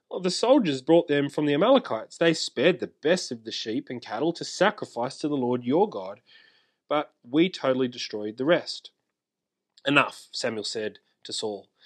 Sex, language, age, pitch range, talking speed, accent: male, English, 30-49, 140-200 Hz, 175 wpm, Australian